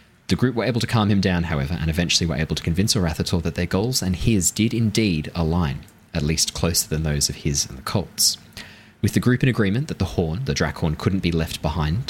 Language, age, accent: English, 20-39, Australian